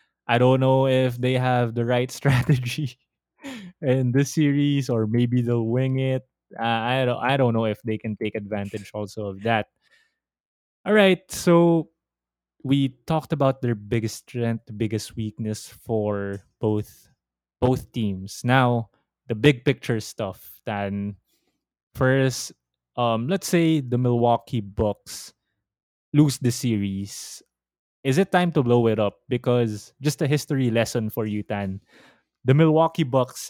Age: 20-39